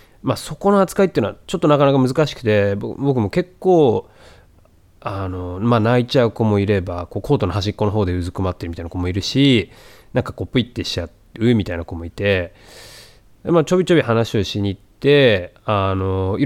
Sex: male